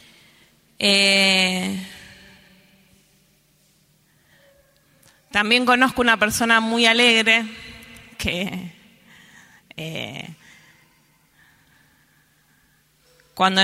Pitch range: 185-240 Hz